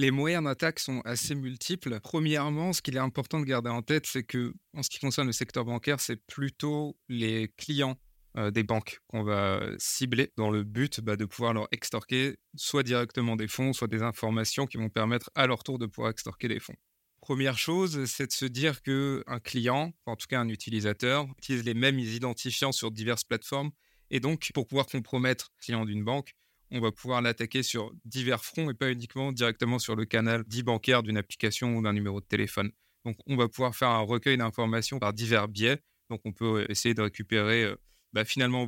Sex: male